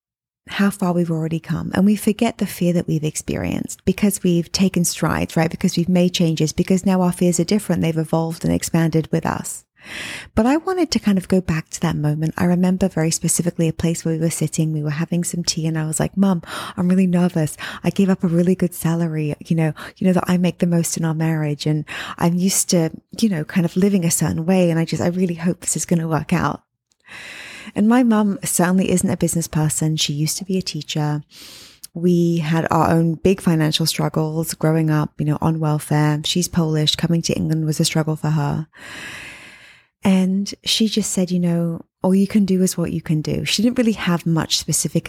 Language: English